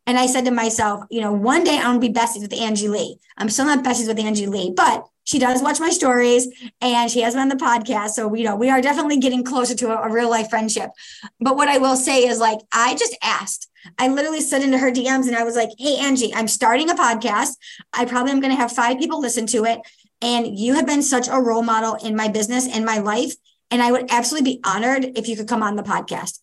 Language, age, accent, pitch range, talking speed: English, 20-39, American, 225-270 Hz, 260 wpm